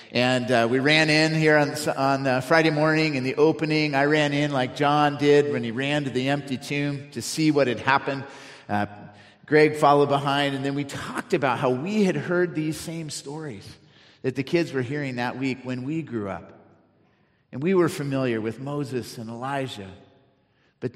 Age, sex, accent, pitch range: 40-59, male, American, 120-145 Hz